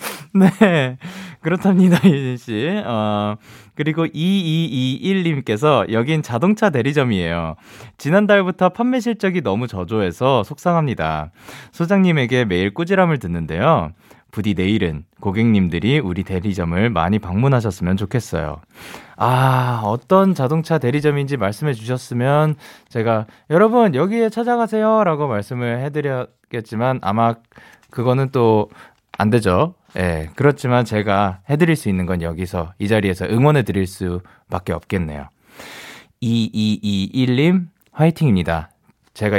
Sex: male